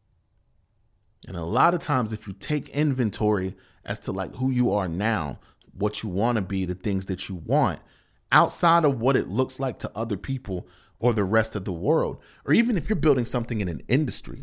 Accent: American